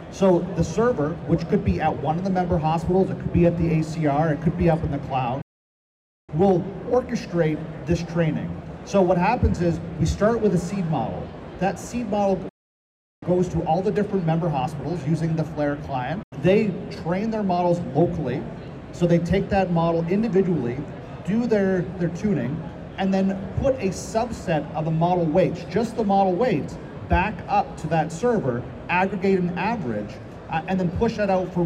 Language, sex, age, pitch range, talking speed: English, male, 40-59, 155-190 Hz, 180 wpm